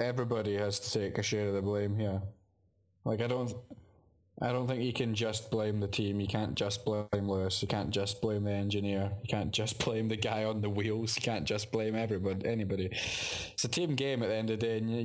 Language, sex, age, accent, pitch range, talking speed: English, male, 10-29, British, 100-115 Hz, 240 wpm